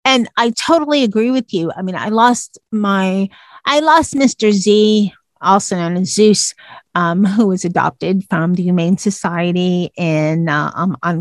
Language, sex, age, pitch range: English, female, 40-59, 185-245 Hz